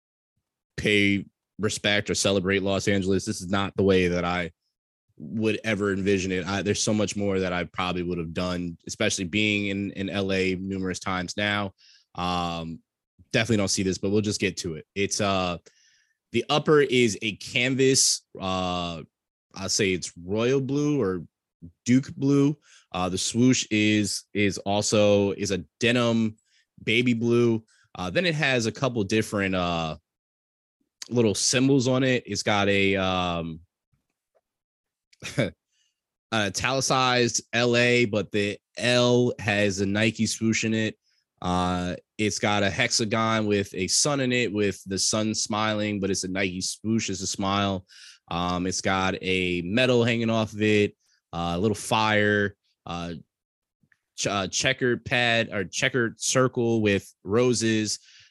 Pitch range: 95-115 Hz